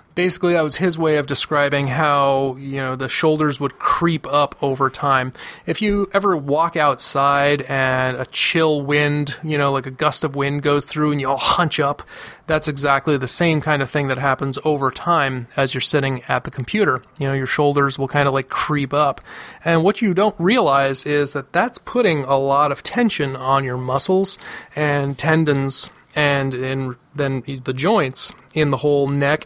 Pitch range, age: 135-160 Hz, 30-49